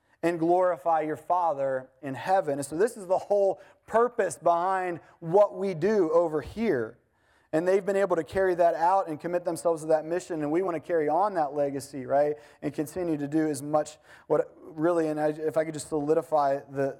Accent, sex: American, male